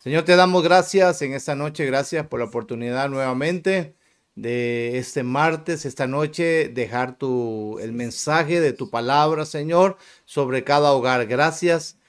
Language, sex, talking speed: Spanish, male, 145 wpm